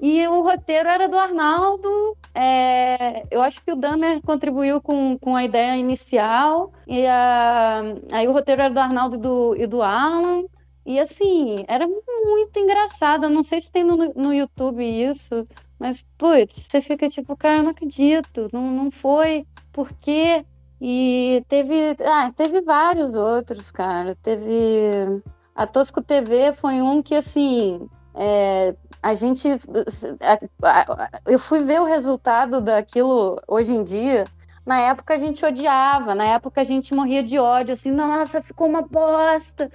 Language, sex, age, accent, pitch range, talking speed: Portuguese, female, 20-39, Brazilian, 250-330 Hz, 150 wpm